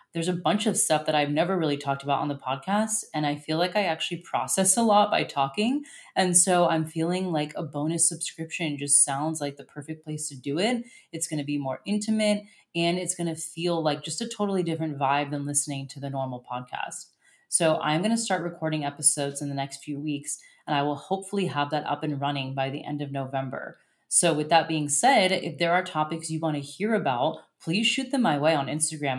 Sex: female